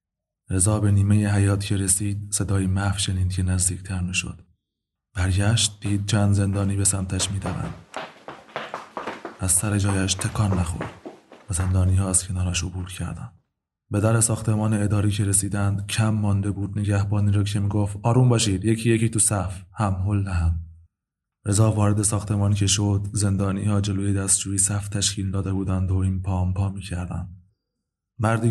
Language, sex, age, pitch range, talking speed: Persian, male, 20-39, 95-105 Hz, 155 wpm